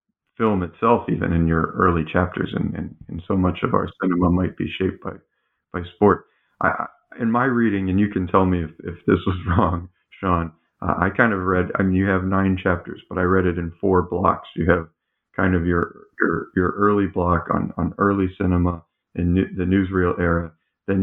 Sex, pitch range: male, 90-95 Hz